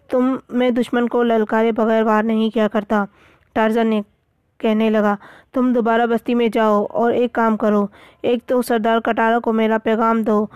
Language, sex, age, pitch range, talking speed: Urdu, female, 20-39, 215-235 Hz, 175 wpm